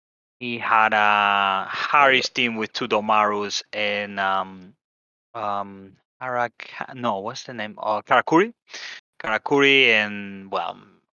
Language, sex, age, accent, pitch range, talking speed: English, male, 20-39, Spanish, 100-120 Hz, 125 wpm